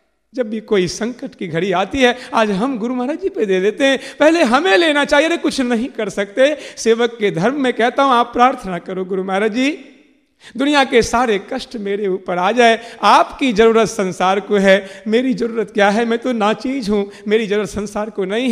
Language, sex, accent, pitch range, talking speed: Hindi, male, native, 195-265 Hz, 205 wpm